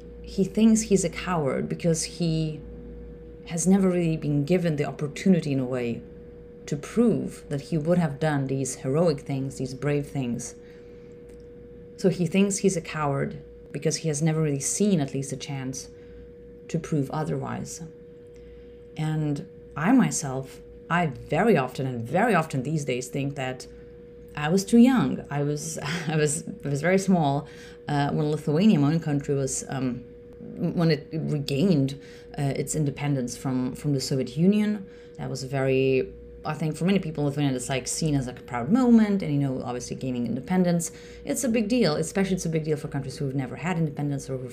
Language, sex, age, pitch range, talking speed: English, female, 30-49, 130-170 Hz, 180 wpm